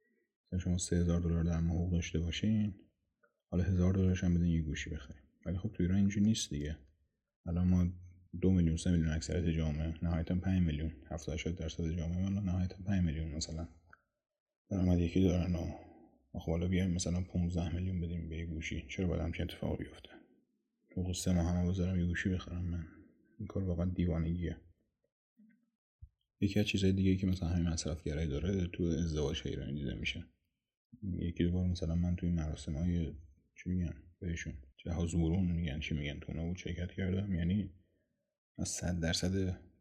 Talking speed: 165 wpm